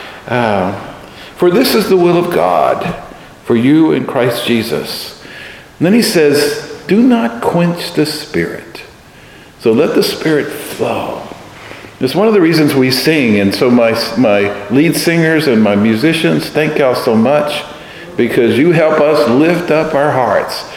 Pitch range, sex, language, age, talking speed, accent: 130-175 Hz, male, English, 50-69, 155 wpm, American